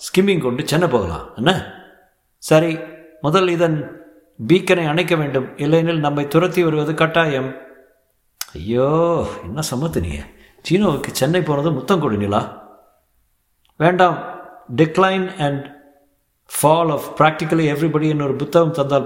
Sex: male